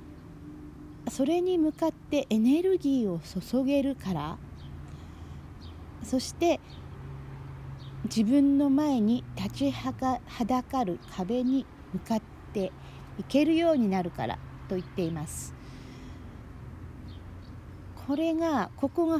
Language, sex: Japanese, female